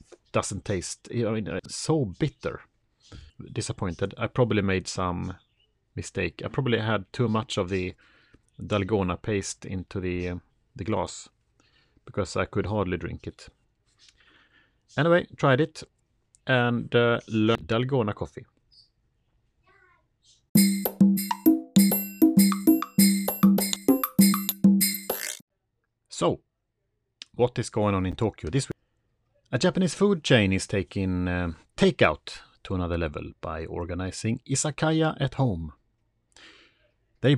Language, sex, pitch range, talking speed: Swedish, male, 100-135 Hz, 100 wpm